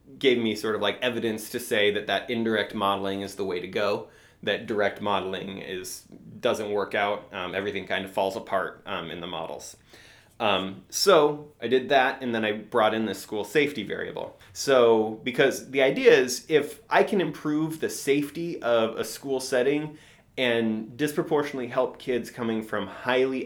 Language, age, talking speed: English, 30-49, 180 wpm